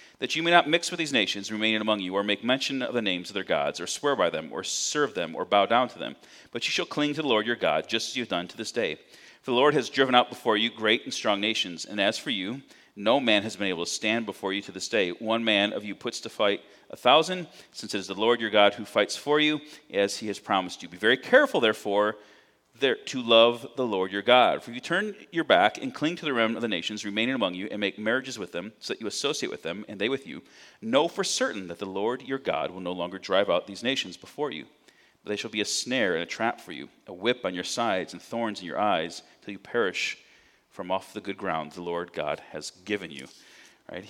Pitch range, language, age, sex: 95-130 Hz, English, 40-59, male